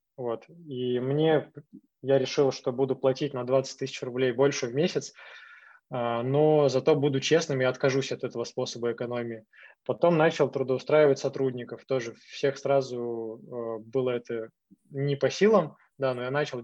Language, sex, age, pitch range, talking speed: Russian, male, 20-39, 120-140 Hz, 150 wpm